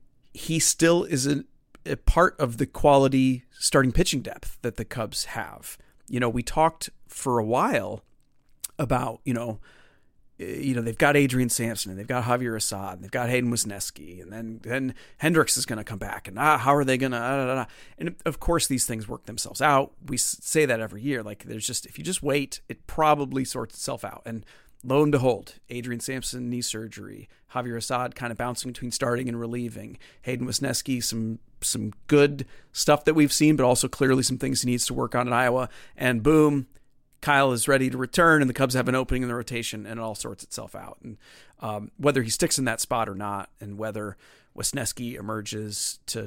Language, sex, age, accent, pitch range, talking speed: English, male, 40-59, American, 115-140 Hz, 205 wpm